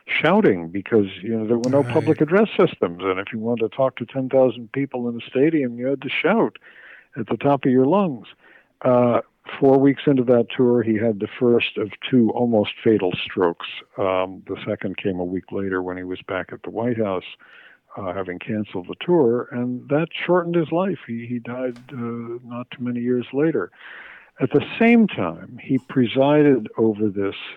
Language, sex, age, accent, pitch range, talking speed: English, male, 60-79, American, 105-135 Hz, 195 wpm